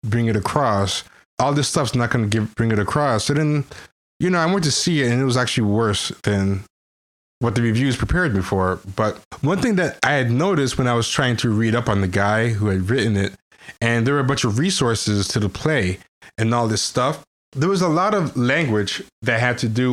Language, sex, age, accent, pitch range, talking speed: English, male, 20-39, American, 105-135 Hz, 235 wpm